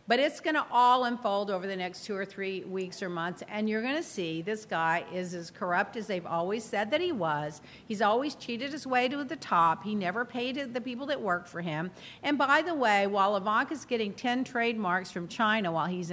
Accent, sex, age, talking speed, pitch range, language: American, female, 50-69, 235 wpm, 200-300 Hz, English